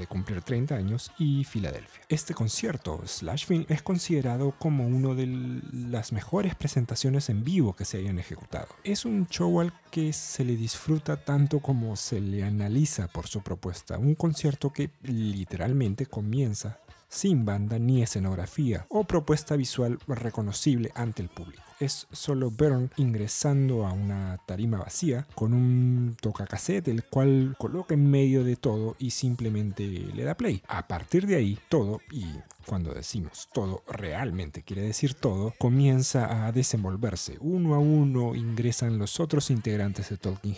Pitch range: 105-140 Hz